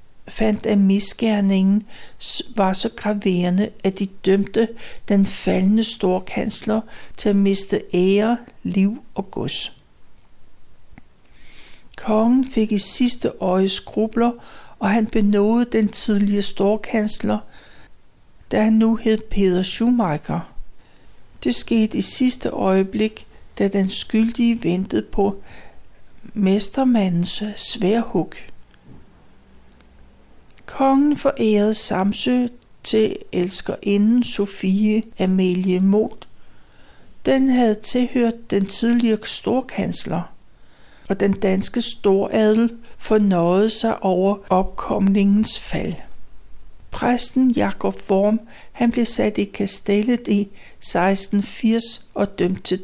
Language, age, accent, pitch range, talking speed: Danish, 60-79, native, 195-225 Hz, 95 wpm